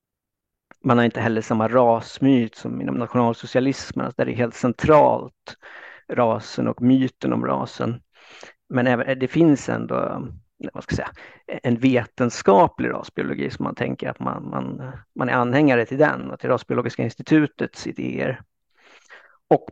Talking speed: 150 wpm